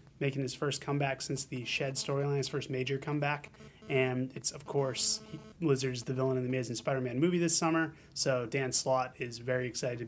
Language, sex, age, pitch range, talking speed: English, male, 30-49, 130-160 Hz, 195 wpm